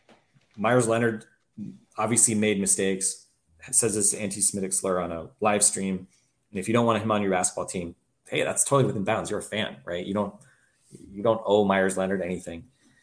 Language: English